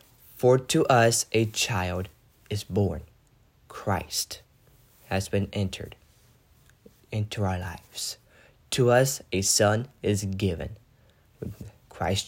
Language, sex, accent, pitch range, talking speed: English, male, American, 100-120 Hz, 105 wpm